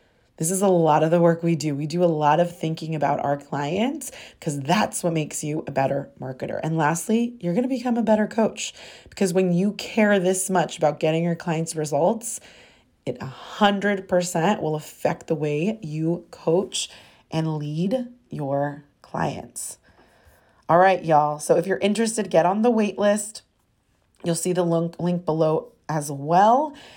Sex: female